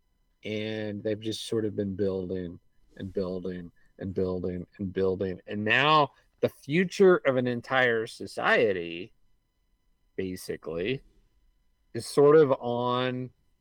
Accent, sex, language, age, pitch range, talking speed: American, male, English, 50-69, 110-150 Hz, 115 wpm